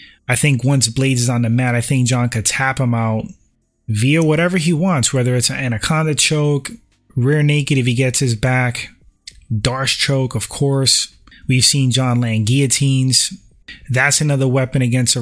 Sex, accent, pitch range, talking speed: male, American, 115-135 Hz, 180 wpm